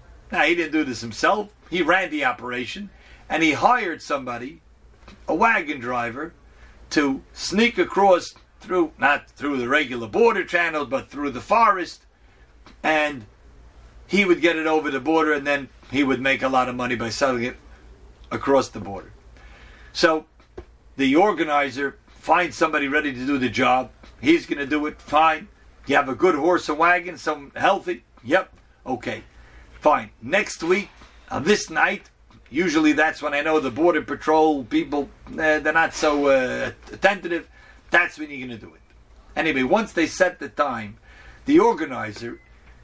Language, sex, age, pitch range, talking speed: English, male, 50-69, 115-165 Hz, 160 wpm